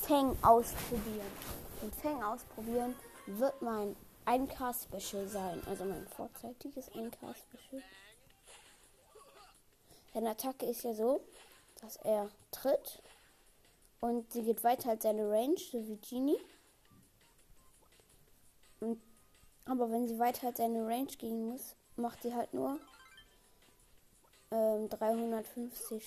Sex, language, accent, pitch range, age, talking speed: female, German, German, 225-255 Hz, 20-39, 110 wpm